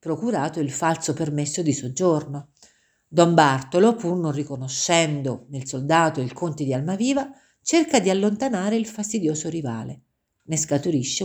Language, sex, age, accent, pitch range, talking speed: Italian, female, 50-69, native, 145-220 Hz, 135 wpm